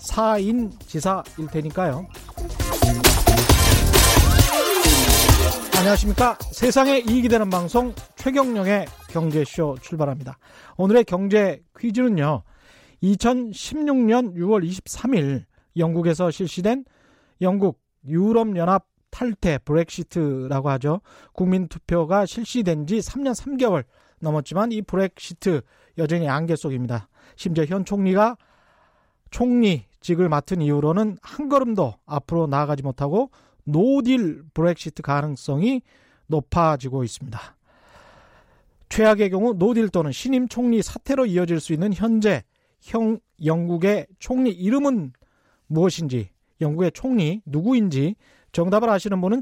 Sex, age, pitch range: male, 40-59, 155-225 Hz